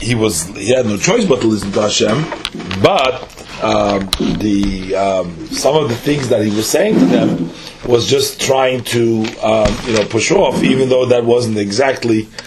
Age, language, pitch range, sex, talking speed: 40-59, English, 110-135 Hz, male, 190 wpm